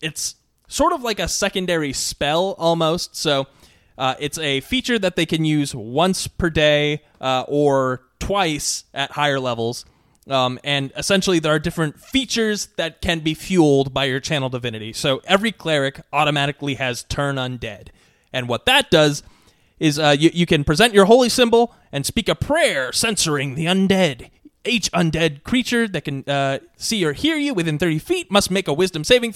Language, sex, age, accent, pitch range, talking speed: English, male, 20-39, American, 140-180 Hz, 175 wpm